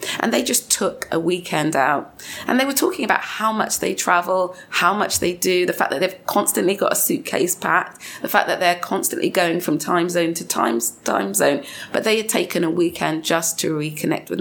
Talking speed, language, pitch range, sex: 215 wpm, English, 165-220 Hz, female